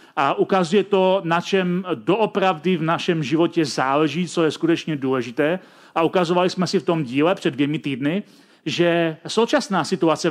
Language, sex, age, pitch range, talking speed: Czech, male, 40-59, 155-190 Hz, 155 wpm